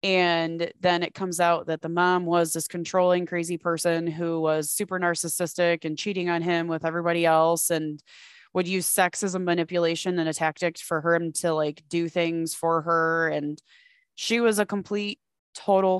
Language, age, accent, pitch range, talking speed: English, 20-39, American, 155-175 Hz, 180 wpm